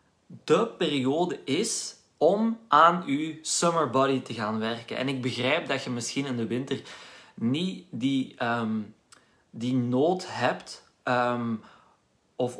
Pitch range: 125-160 Hz